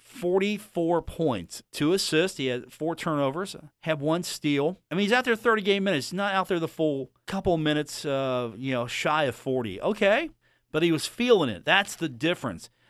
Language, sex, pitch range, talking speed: English, male, 145-195 Hz, 195 wpm